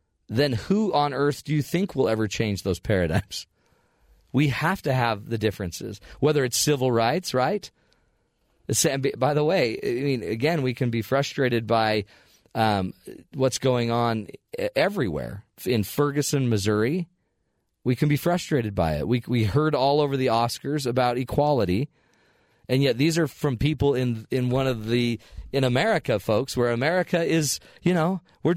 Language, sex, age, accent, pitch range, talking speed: English, male, 40-59, American, 105-155 Hz, 160 wpm